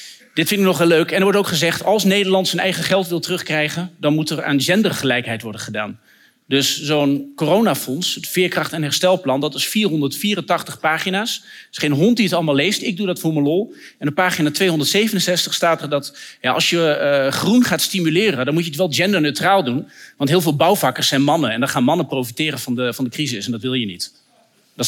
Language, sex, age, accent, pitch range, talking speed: Dutch, male, 40-59, Dutch, 150-205 Hz, 220 wpm